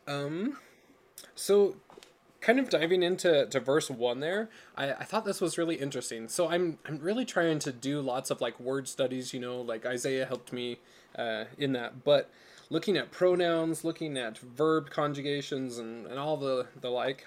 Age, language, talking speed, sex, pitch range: 20-39, English, 180 wpm, male, 125-160 Hz